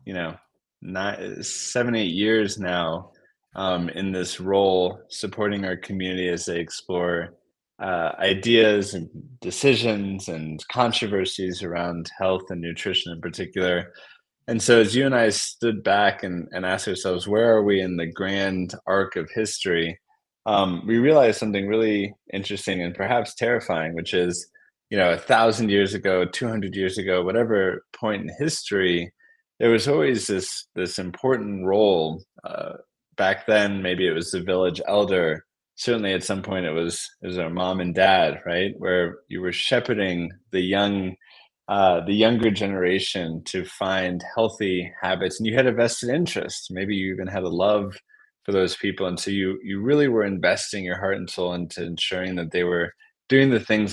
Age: 20-39